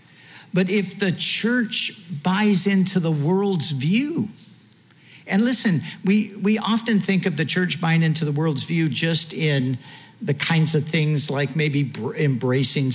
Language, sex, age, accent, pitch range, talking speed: English, male, 50-69, American, 140-180 Hz, 150 wpm